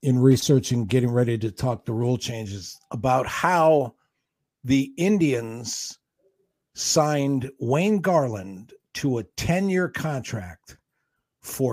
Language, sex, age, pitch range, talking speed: English, male, 50-69, 120-145 Hz, 115 wpm